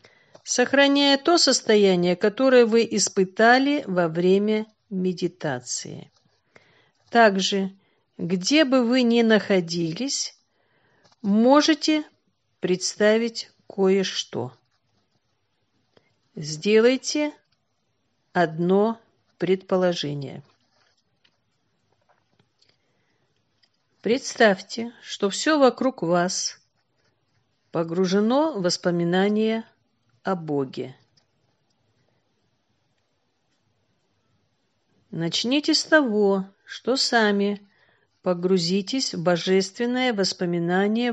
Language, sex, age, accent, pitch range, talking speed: Russian, female, 50-69, native, 160-235 Hz, 60 wpm